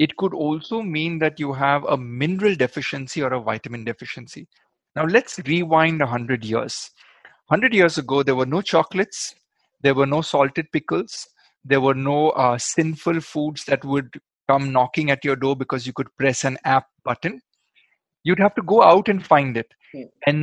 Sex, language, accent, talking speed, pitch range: male, Hindi, native, 180 wpm, 130-170 Hz